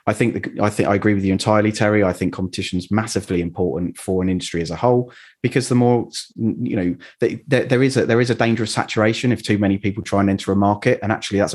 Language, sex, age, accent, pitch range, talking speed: English, male, 30-49, British, 90-105 Hz, 240 wpm